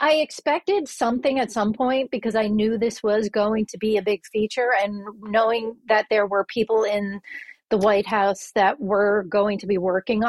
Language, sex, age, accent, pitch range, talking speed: English, female, 40-59, American, 190-220 Hz, 190 wpm